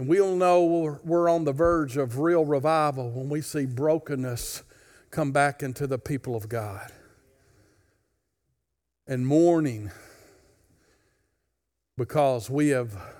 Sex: male